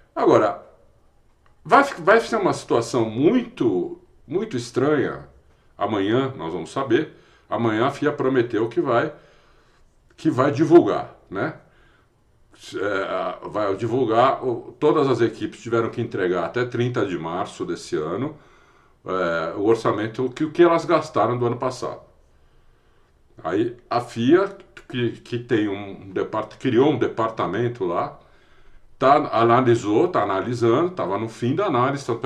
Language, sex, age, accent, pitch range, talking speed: Portuguese, male, 60-79, Brazilian, 115-185 Hz, 130 wpm